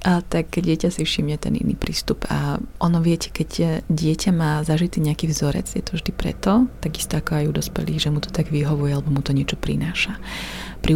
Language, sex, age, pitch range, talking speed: Slovak, female, 30-49, 150-175 Hz, 195 wpm